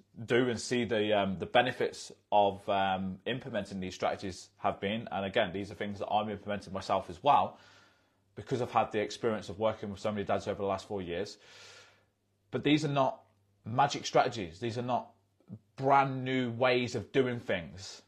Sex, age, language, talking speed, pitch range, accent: male, 20-39, English, 185 wpm, 100-120 Hz, British